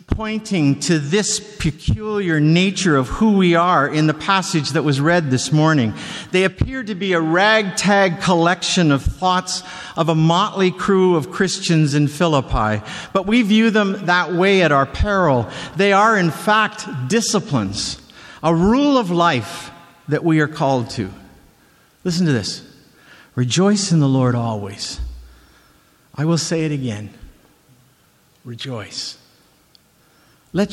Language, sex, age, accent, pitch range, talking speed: English, male, 50-69, American, 130-190 Hz, 140 wpm